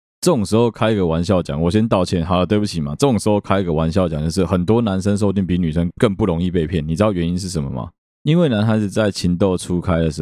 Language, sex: Chinese, male